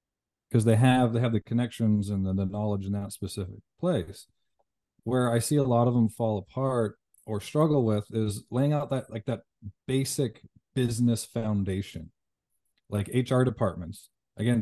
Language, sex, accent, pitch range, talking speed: English, male, American, 105-120 Hz, 165 wpm